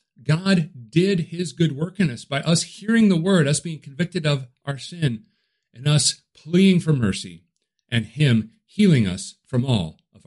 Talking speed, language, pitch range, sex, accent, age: 175 wpm, English, 110-140 Hz, male, American, 50-69